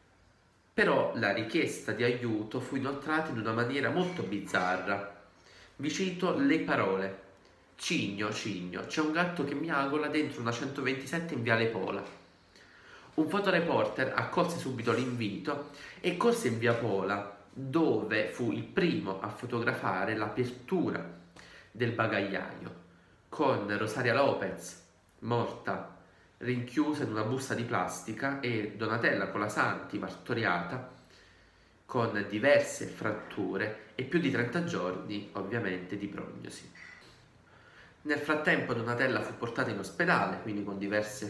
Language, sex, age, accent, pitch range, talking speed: Italian, male, 30-49, native, 100-135 Hz, 125 wpm